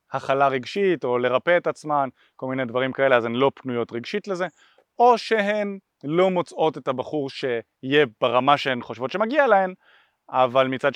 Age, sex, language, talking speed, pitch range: 30-49, male, Hebrew, 165 wpm, 125-190 Hz